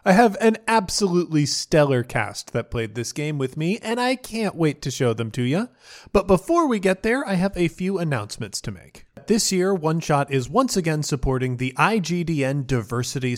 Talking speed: 195 wpm